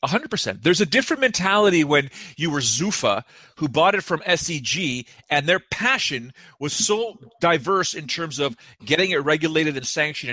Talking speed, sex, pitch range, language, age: 155 wpm, male, 145-185 Hz, English, 40-59